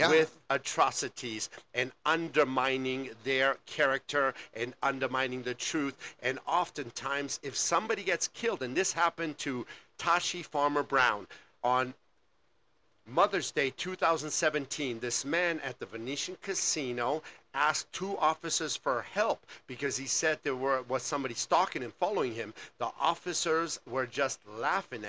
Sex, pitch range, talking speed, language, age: male, 130-175 Hz, 125 wpm, English, 50-69